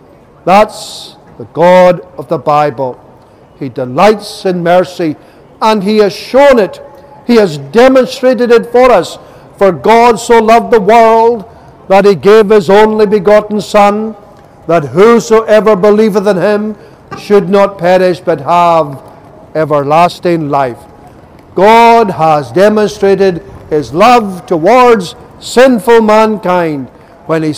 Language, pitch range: English, 155-210 Hz